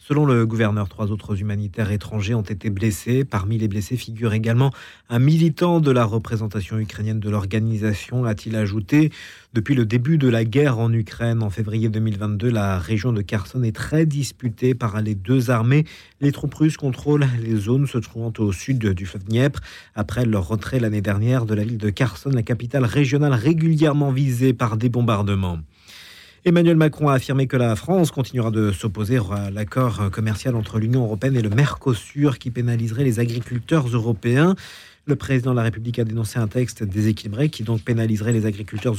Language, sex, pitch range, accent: French, male, 110-140 Hz, French